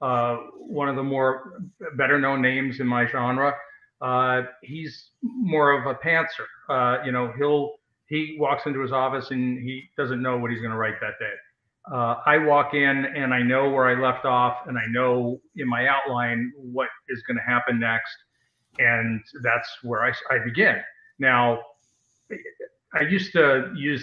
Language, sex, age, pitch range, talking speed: English, male, 50-69, 125-160 Hz, 175 wpm